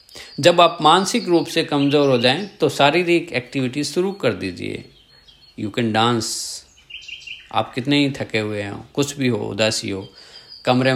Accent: native